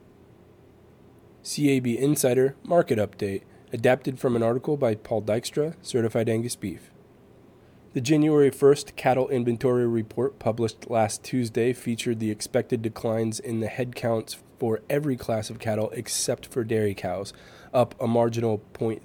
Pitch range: 110-125 Hz